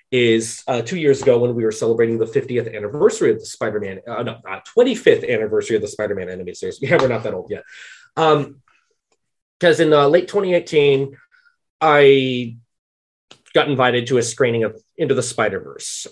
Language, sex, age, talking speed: English, male, 20-39, 175 wpm